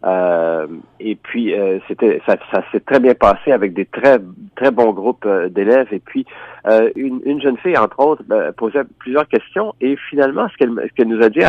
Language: French